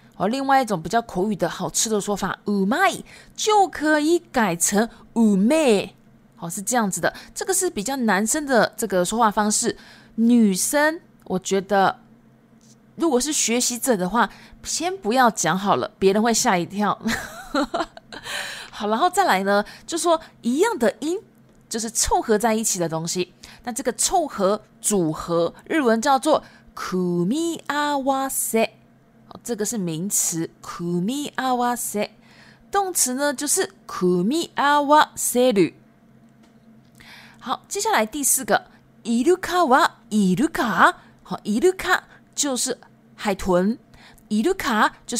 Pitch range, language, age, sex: 200-275 Hz, Japanese, 20-39, female